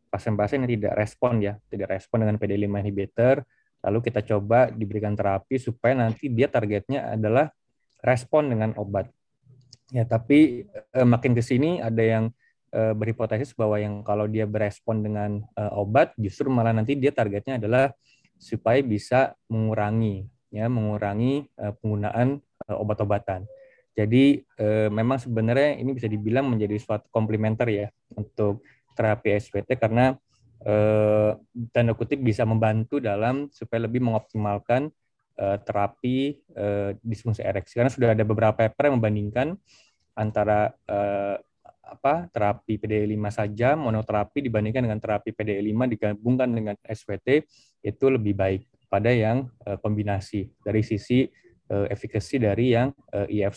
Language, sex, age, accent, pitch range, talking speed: Indonesian, male, 20-39, native, 105-125 Hz, 135 wpm